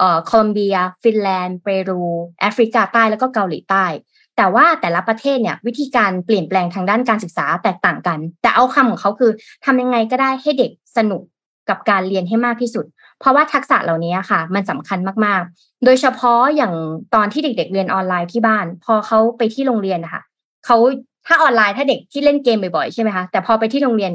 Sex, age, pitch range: female, 20-39, 195-250 Hz